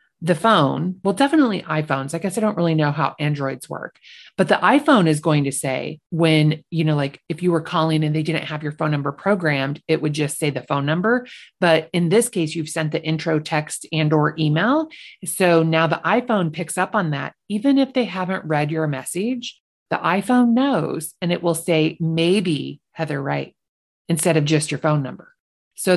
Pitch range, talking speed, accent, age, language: 155-195 Hz, 205 wpm, American, 30-49, English